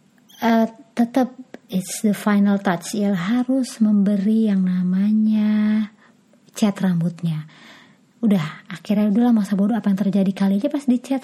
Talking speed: 135 wpm